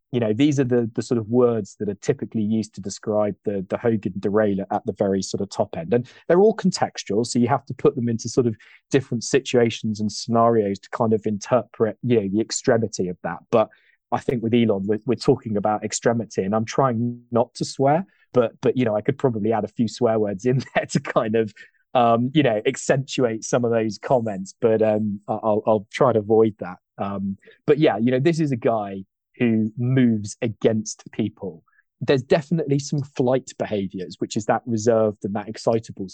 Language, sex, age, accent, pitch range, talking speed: English, male, 20-39, British, 105-130 Hz, 210 wpm